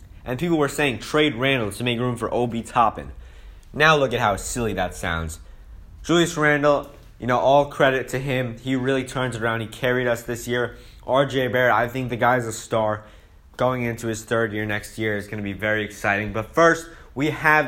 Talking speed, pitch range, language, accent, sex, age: 210 wpm, 115-140 Hz, English, American, male, 20-39